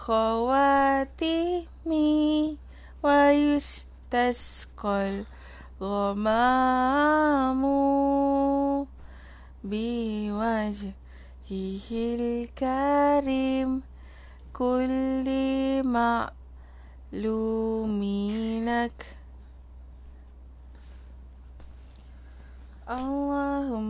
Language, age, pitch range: Malay, 20-39, 220-295 Hz